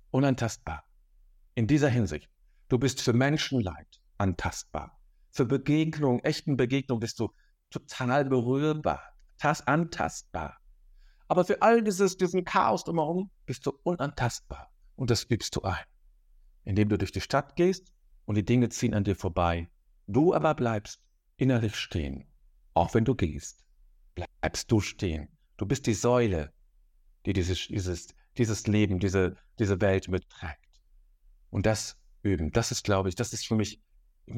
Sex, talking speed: male, 150 wpm